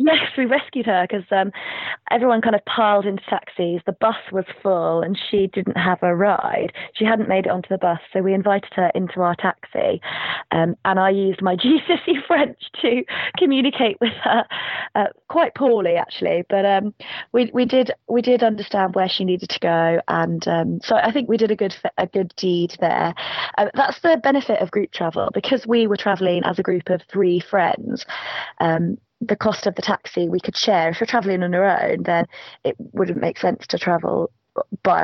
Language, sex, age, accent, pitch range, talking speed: English, female, 20-39, British, 180-230 Hz, 200 wpm